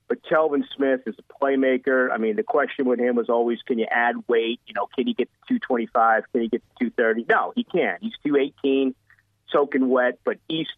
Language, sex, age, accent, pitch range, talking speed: English, male, 40-59, American, 115-140 Hz, 215 wpm